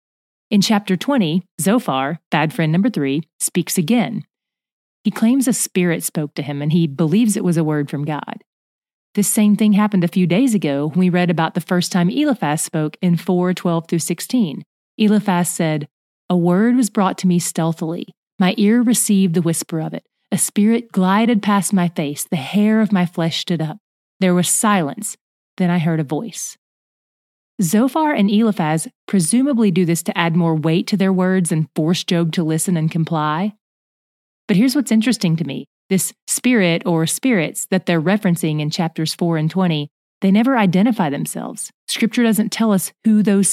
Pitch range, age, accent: 165-210 Hz, 30-49, American